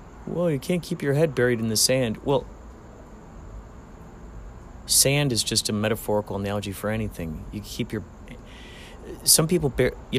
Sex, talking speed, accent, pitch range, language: male, 155 wpm, American, 90-120 Hz, English